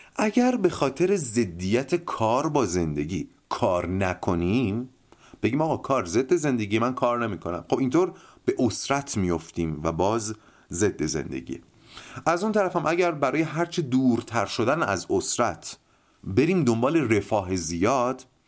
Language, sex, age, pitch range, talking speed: Persian, male, 30-49, 100-160 Hz, 135 wpm